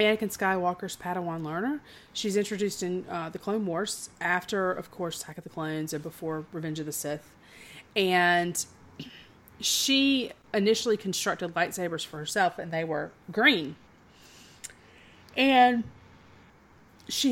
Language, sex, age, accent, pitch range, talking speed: English, female, 30-49, American, 170-210 Hz, 130 wpm